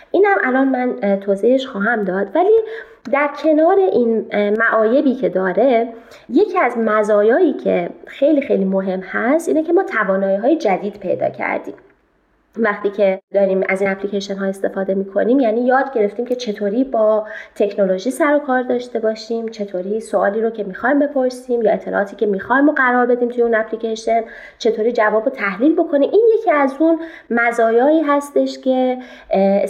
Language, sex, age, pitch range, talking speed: Persian, female, 20-39, 200-270 Hz, 155 wpm